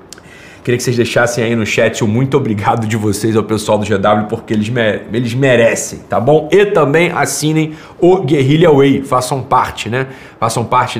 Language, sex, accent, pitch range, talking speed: Portuguese, male, Brazilian, 110-140 Hz, 185 wpm